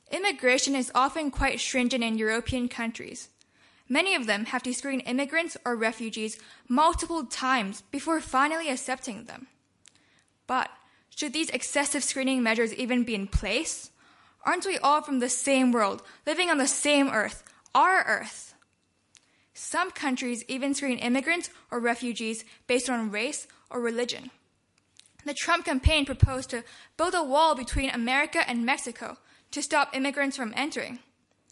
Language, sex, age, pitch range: Chinese, female, 10-29, 240-290 Hz